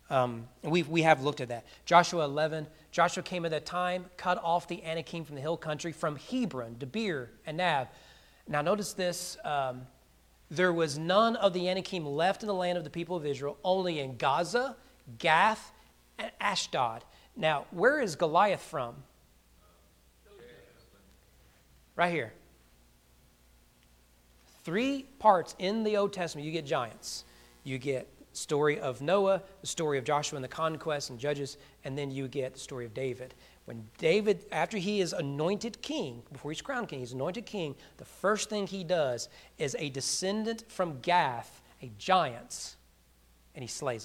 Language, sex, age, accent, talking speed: English, male, 40-59, American, 160 wpm